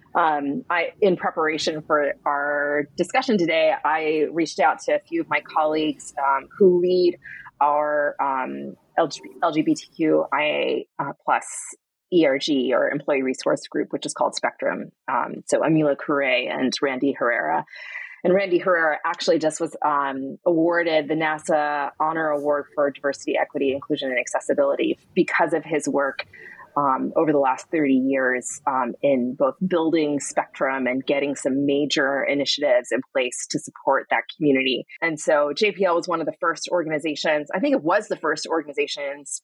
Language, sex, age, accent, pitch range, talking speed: English, female, 20-39, American, 145-185 Hz, 150 wpm